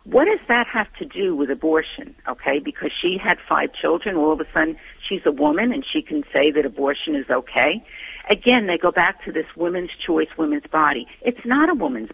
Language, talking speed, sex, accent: English, 215 wpm, female, American